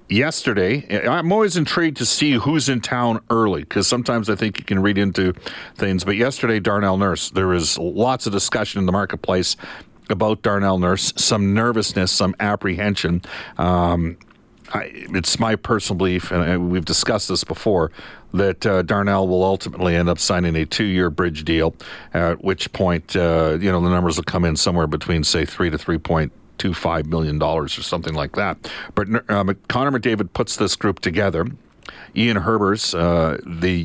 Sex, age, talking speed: male, 50-69, 175 wpm